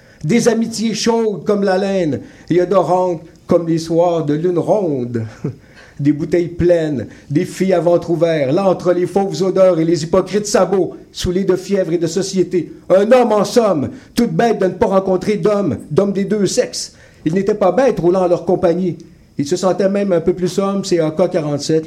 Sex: male